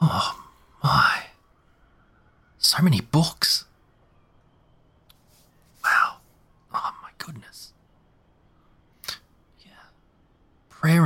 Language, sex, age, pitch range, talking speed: English, male, 30-49, 100-135 Hz, 60 wpm